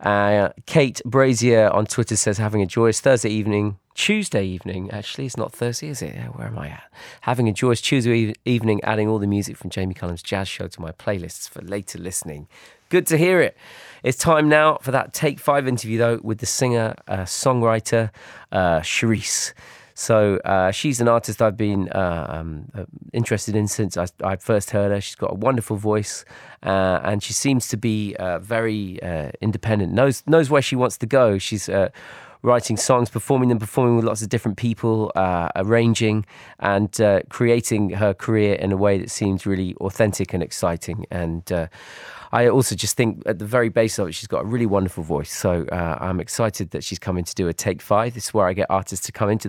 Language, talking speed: French, 205 wpm